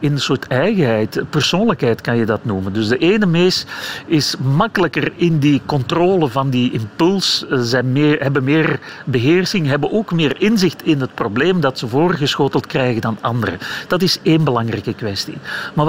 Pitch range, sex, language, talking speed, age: 125-175 Hz, male, Dutch, 175 wpm, 40-59